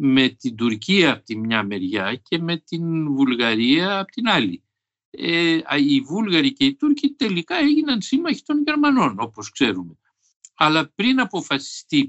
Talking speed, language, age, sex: 150 wpm, Greek, 60-79, male